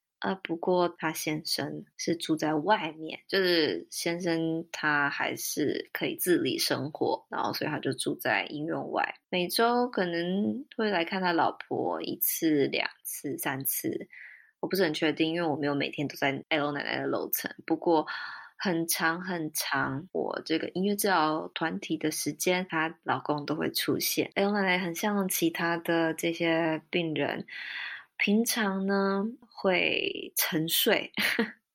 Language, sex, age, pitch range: Chinese, female, 20-39, 160-205 Hz